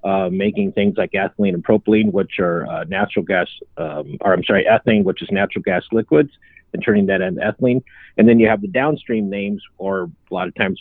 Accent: American